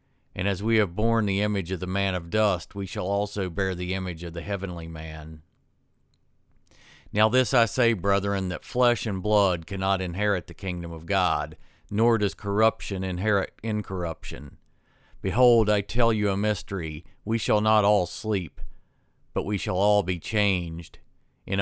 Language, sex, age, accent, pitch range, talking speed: English, male, 50-69, American, 90-105 Hz, 165 wpm